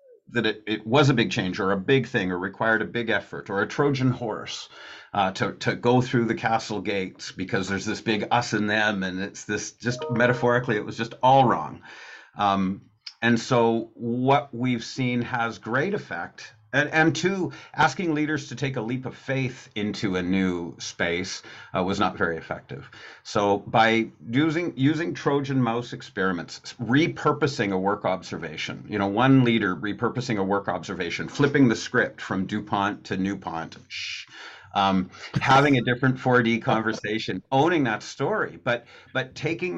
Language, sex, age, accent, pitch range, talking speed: English, male, 50-69, American, 100-130 Hz, 170 wpm